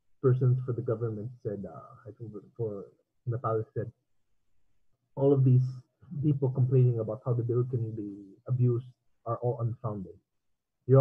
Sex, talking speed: male, 140 wpm